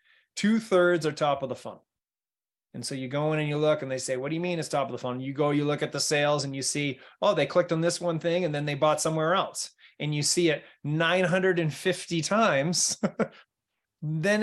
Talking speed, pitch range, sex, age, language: 235 wpm, 140-175 Hz, male, 30-49, English